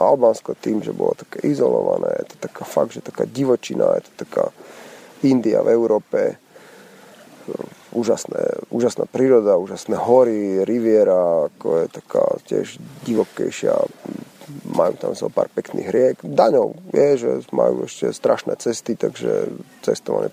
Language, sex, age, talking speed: Slovak, male, 30-49, 135 wpm